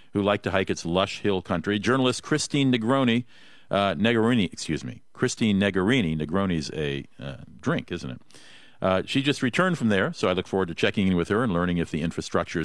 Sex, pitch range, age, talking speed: male, 95-130 Hz, 50-69, 205 wpm